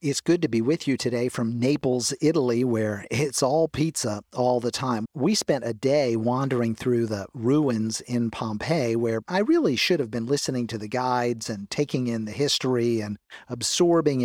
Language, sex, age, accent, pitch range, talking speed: English, male, 50-69, American, 115-150 Hz, 185 wpm